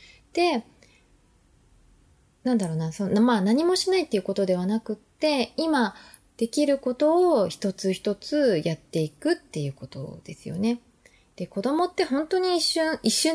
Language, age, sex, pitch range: Japanese, 20-39, female, 160-250 Hz